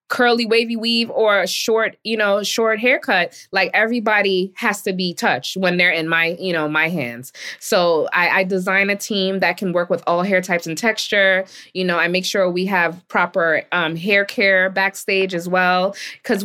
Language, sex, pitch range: English, female, 185-230 Hz